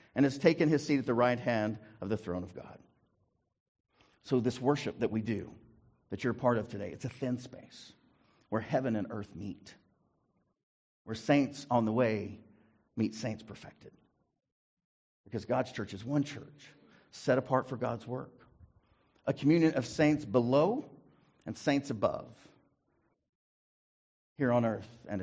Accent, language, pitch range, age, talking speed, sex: American, English, 110-135 Hz, 50-69, 155 wpm, male